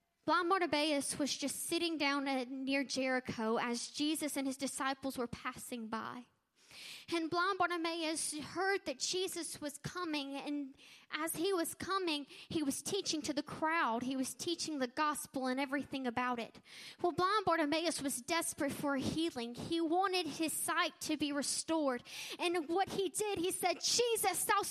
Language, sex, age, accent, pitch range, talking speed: English, female, 10-29, American, 285-380 Hz, 160 wpm